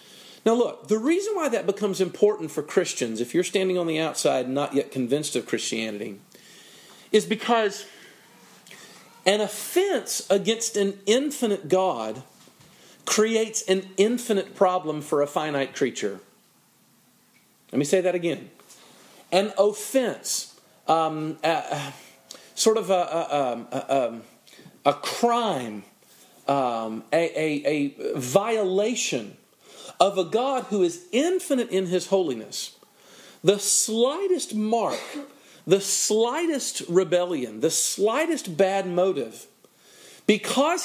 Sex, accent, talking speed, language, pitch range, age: male, American, 115 wpm, English, 160-225 Hz, 40-59